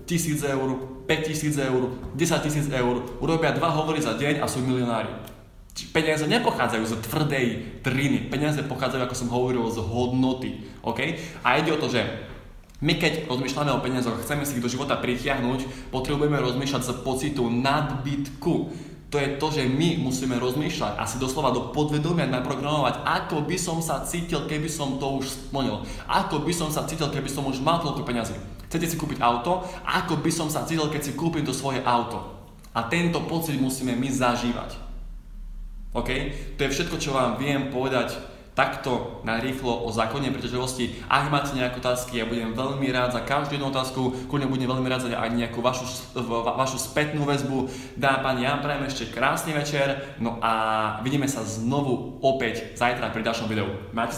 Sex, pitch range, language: male, 120-145 Hz, Slovak